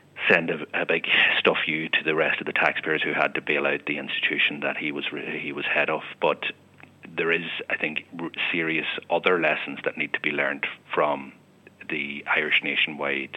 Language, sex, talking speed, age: English, male, 190 wpm, 40-59